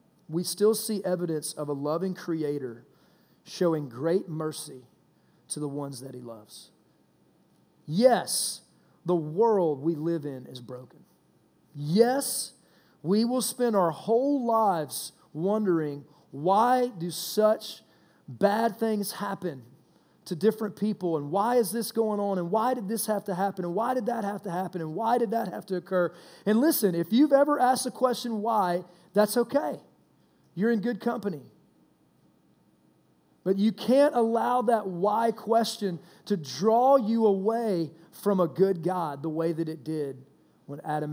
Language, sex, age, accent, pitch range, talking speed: English, male, 30-49, American, 155-220 Hz, 155 wpm